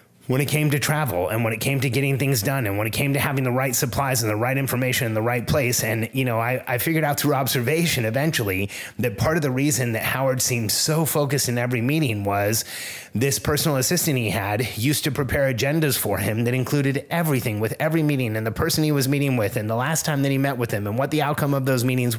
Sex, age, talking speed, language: male, 30-49, 255 wpm, English